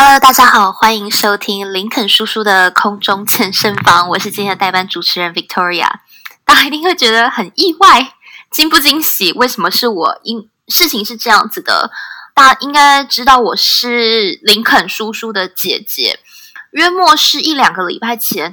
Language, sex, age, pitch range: Chinese, female, 20-39, 205-280 Hz